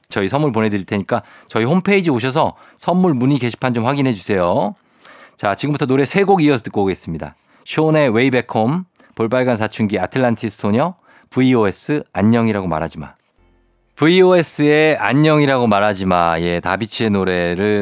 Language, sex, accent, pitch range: Korean, male, native, 100-145 Hz